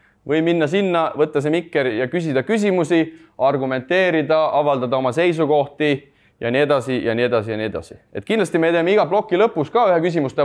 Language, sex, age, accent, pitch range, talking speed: English, male, 20-39, Finnish, 140-170 Hz, 185 wpm